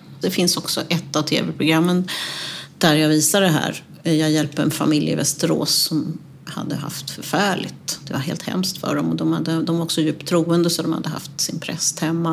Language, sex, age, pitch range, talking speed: Swedish, female, 40-59, 150-180 Hz, 205 wpm